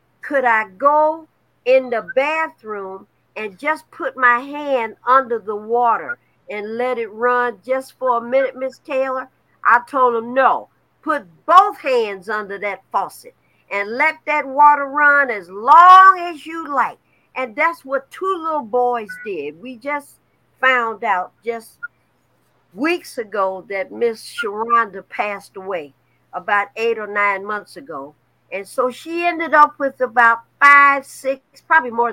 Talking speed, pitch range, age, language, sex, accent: 150 wpm, 225-295 Hz, 50-69, English, female, American